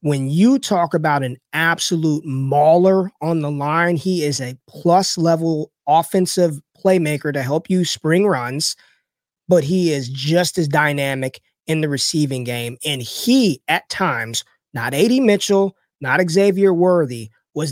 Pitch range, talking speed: 140-180 Hz, 140 wpm